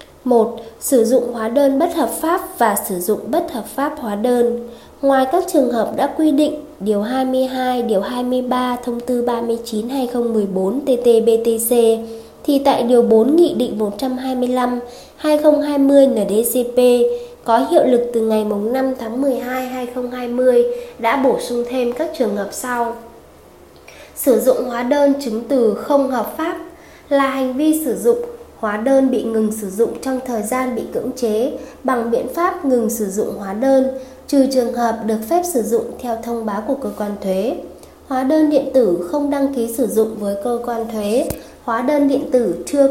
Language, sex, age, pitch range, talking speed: Vietnamese, female, 10-29, 230-270 Hz, 175 wpm